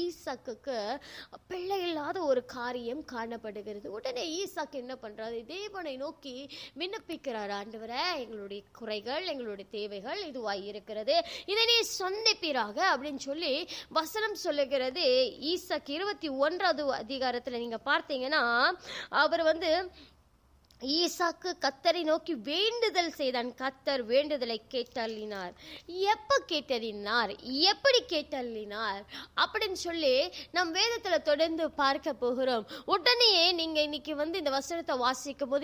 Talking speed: 85 wpm